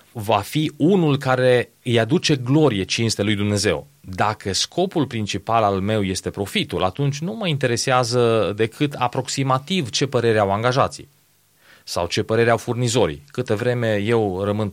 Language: Romanian